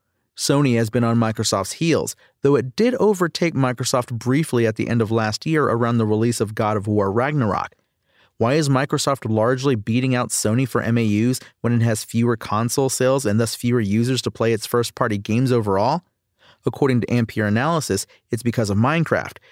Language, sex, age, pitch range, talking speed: English, male, 30-49, 110-135 Hz, 180 wpm